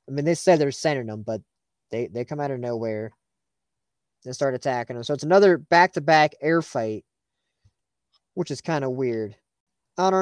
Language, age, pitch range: English, 20-39, 120-150 Hz